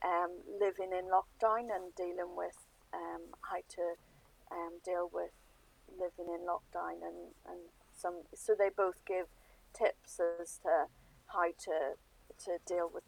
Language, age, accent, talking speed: English, 30-49, British, 140 wpm